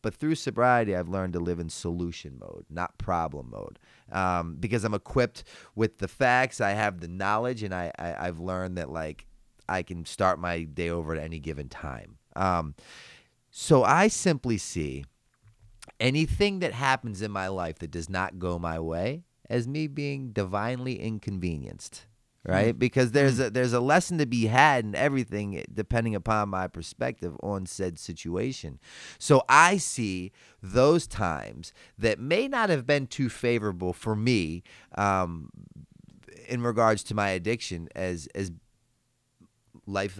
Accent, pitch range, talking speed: American, 90-120 Hz, 150 wpm